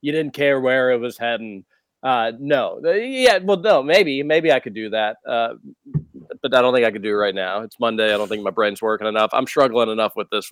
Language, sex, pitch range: English, male, 140-200 Hz